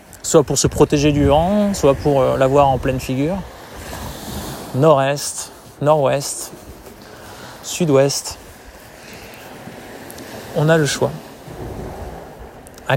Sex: male